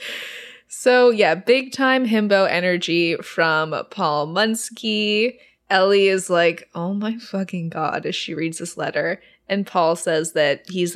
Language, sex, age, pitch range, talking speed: English, female, 20-39, 175-250 Hz, 140 wpm